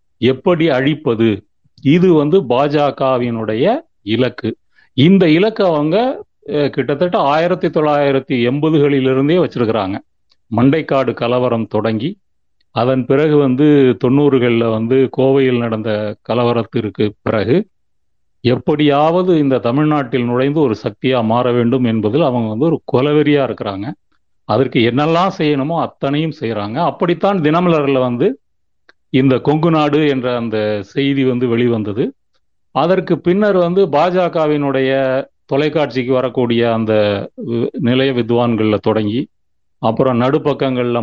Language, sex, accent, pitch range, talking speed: Tamil, male, native, 120-150 Hz, 100 wpm